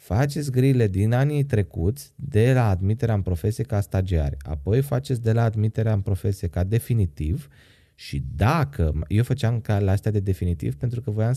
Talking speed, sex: 175 wpm, male